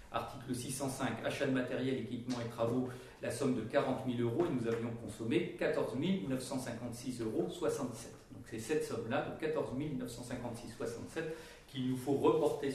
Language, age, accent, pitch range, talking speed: French, 40-59, French, 115-150 Hz, 150 wpm